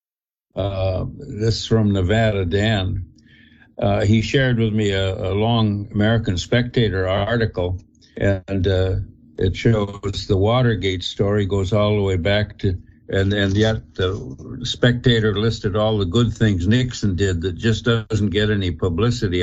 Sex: male